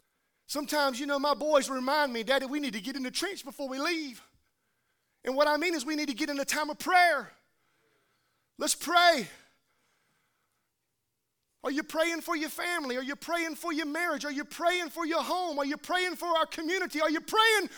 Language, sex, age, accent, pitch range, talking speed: English, male, 30-49, American, 230-320 Hz, 205 wpm